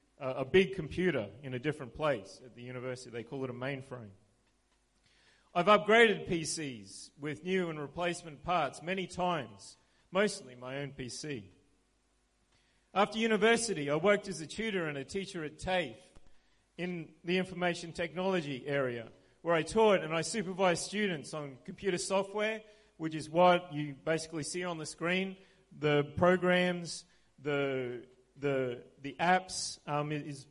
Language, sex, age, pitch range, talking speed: English, male, 40-59, 140-185 Hz, 145 wpm